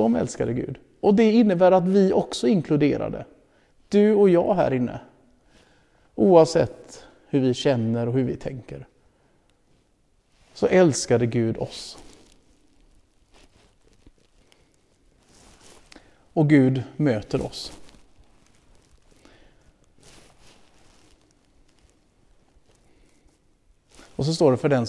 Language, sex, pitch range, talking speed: Swedish, male, 120-145 Hz, 90 wpm